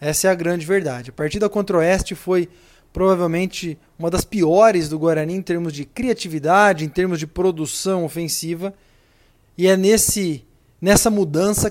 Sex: male